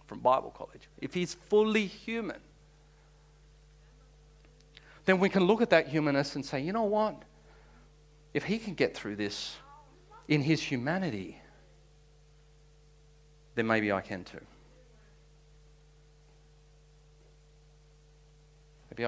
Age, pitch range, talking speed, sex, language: 50-69, 140-155 Hz, 105 wpm, male, English